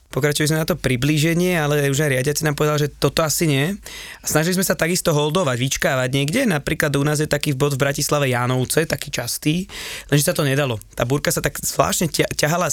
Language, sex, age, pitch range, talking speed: Slovak, male, 20-39, 135-160 Hz, 205 wpm